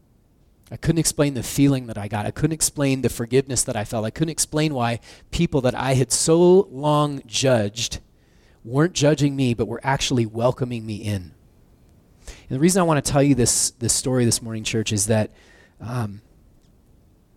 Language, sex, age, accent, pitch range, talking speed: English, male, 30-49, American, 110-135 Hz, 185 wpm